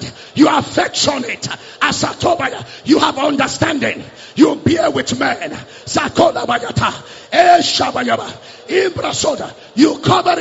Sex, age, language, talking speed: male, 50-69, English, 70 wpm